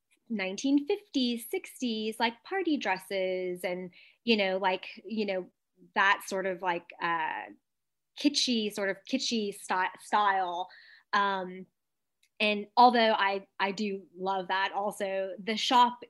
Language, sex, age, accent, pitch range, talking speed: English, female, 20-39, American, 180-225 Hz, 120 wpm